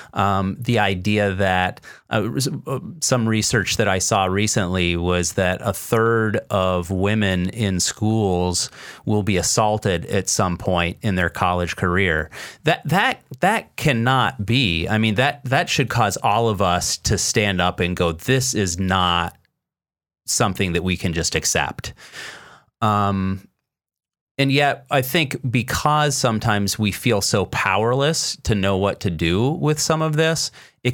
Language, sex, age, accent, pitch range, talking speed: English, male, 30-49, American, 90-120 Hz, 150 wpm